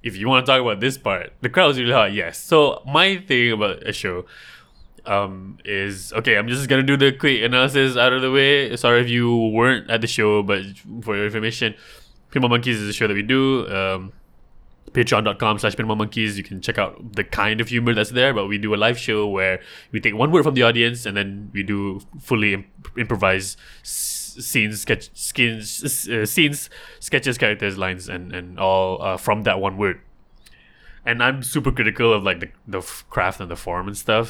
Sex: male